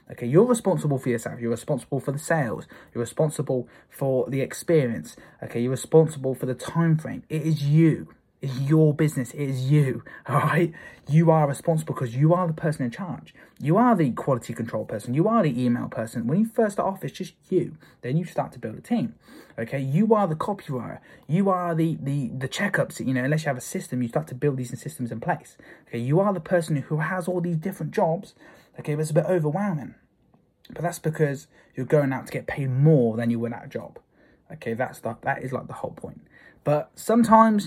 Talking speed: 220 wpm